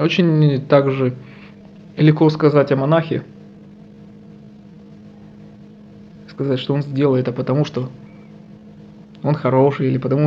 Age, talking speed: 20-39, 100 wpm